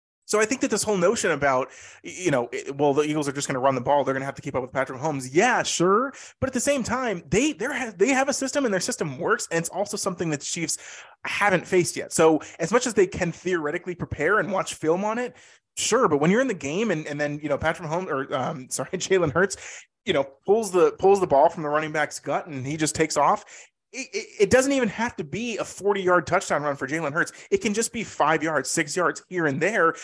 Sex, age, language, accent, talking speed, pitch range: male, 20-39, English, American, 260 wpm, 150-205 Hz